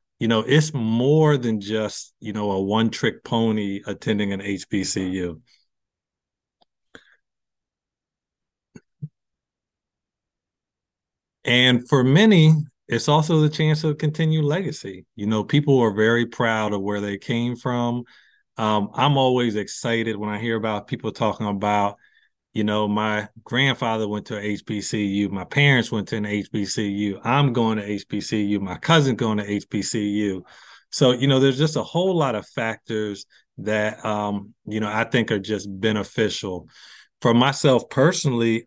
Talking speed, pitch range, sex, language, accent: 140 wpm, 105-125 Hz, male, English, American